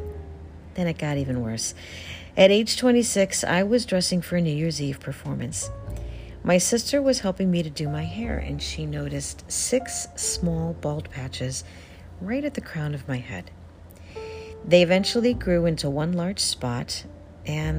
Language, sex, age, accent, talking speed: English, female, 50-69, American, 160 wpm